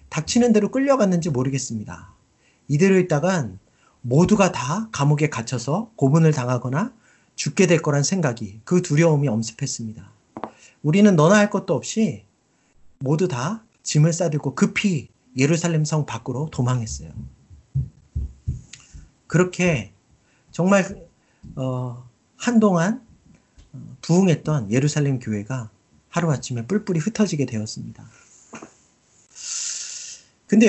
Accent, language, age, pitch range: native, Korean, 40-59, 120-185 Hz